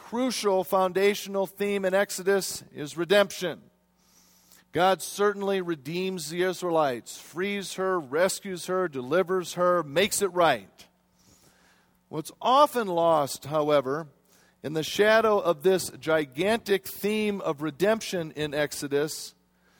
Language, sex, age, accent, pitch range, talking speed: English, male, 40-59, American, 155-200 Hz, 110 wpm